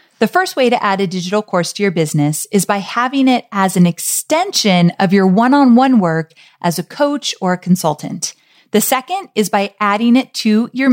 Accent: American